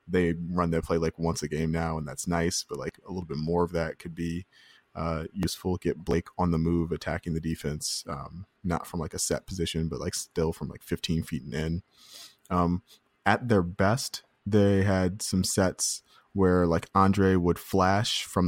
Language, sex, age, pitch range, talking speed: English, male, 20-39, 80-100 Hz, 200 wpm